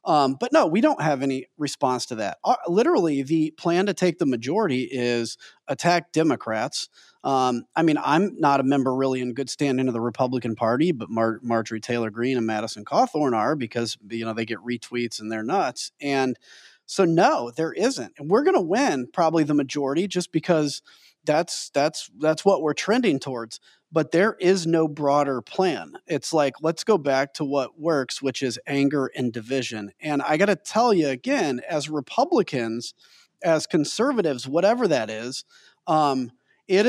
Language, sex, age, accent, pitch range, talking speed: English, male, 30-49, American, 125-180 Hz, 180 wpm